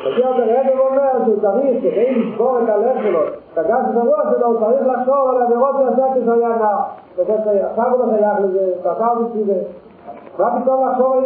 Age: 50-69